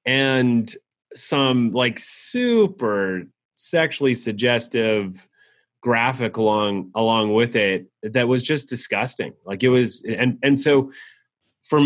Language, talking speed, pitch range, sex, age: English, 110 wpm, 105-125 Hz, male, 30-49